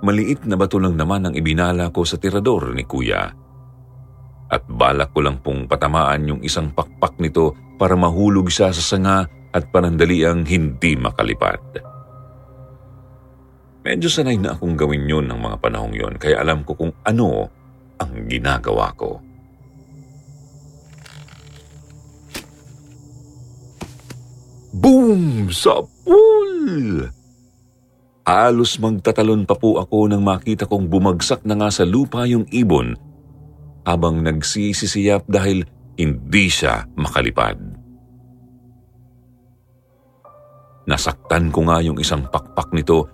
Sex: male